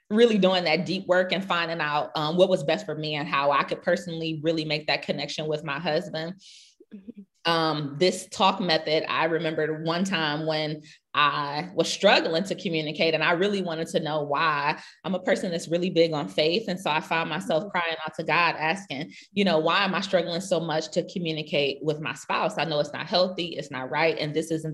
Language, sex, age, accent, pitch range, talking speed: English, female, 20-39, American, 155-185 Hz, 215 wpm